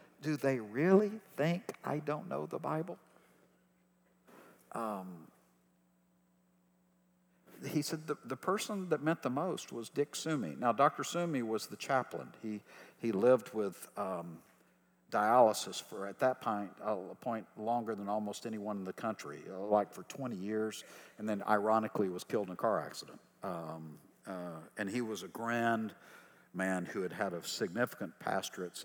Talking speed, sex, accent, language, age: 155 wpm, male, American, English, 60-79